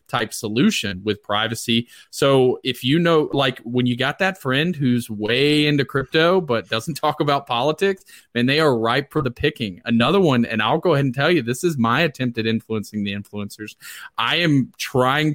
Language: English